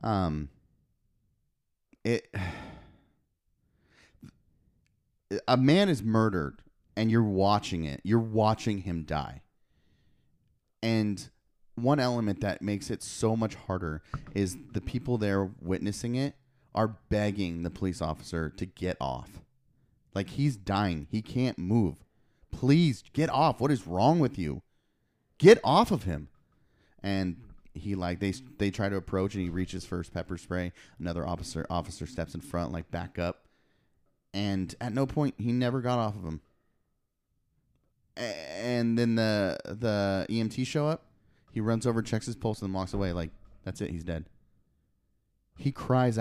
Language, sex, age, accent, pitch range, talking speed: English, male, 30-49, American, 90-115 Hz, 145 wpm